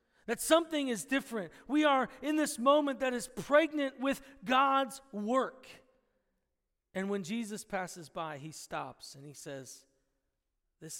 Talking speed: 140 wpm